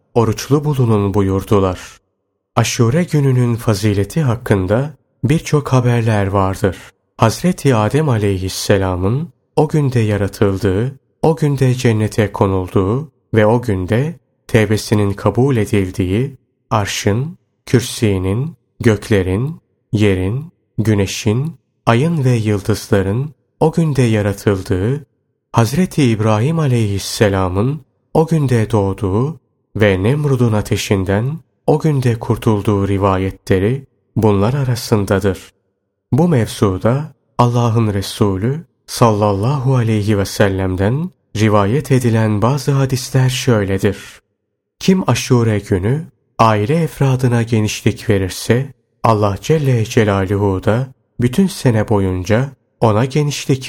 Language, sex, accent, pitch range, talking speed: Turkish, male, native, 100-130 Hz, 90 wpm